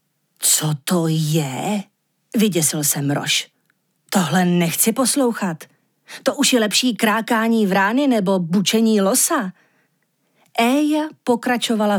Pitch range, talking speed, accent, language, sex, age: 175-250 Hz, 100 wpm, native, Czech, female, 40-59